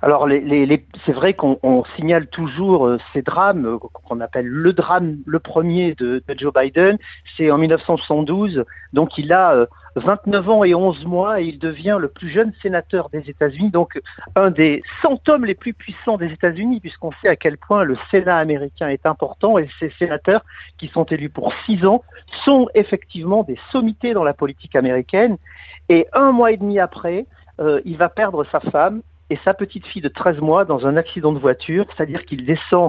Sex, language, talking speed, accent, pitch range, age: male, French, 195 wpm, French, 145-195 Hz, 50-69